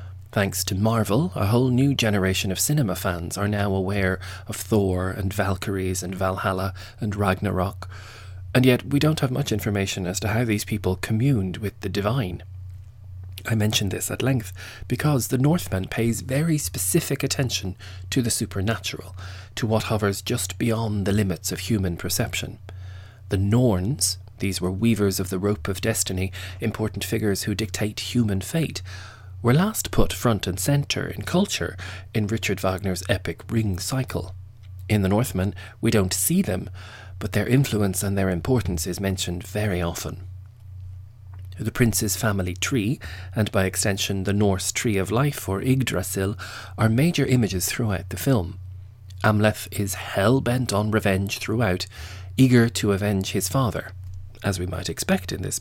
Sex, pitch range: male, 95-115 Hz